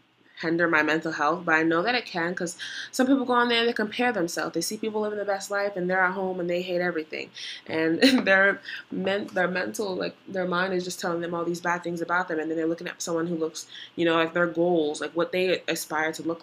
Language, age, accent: English, 20-39, American